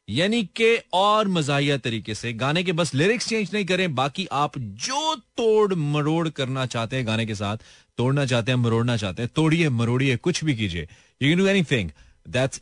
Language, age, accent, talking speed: Hindi, 30-49, native, 200 wpm